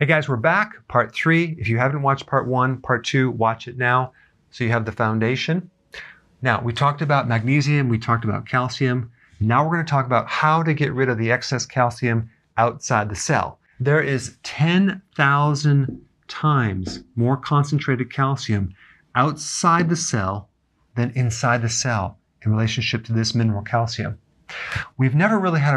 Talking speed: 170 wpm